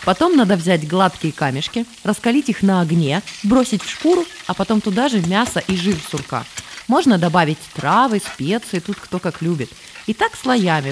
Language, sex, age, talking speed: Russian, female, 20-39, 170 wpm